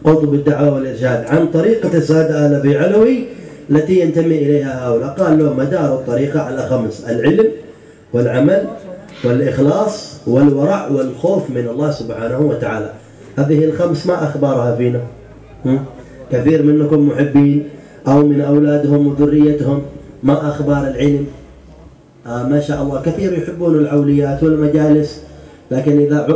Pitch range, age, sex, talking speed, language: 135-170 Hz, 30-49, male, 115 wpm, Indonesian